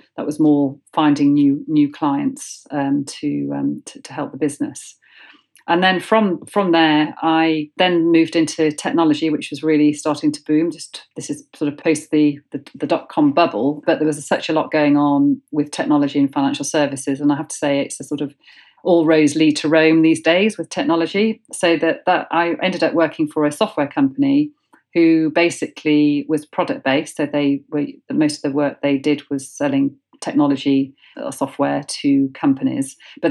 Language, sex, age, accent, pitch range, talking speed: English, female, 40-59, British, 145-170 Hz, 195 wpm